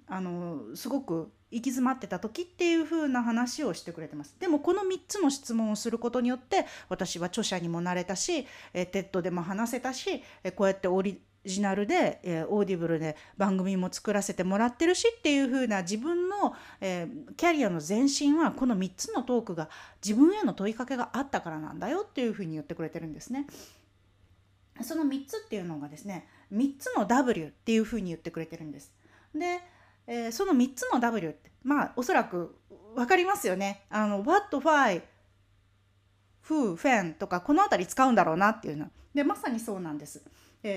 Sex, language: female, Japanese